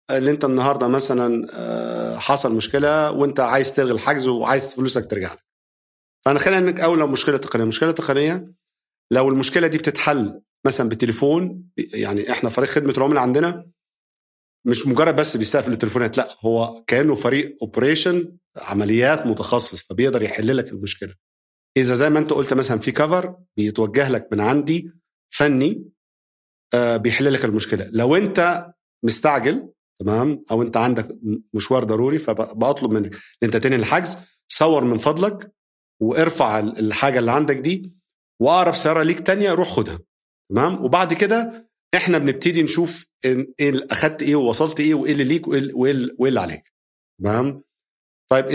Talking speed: 135 wpm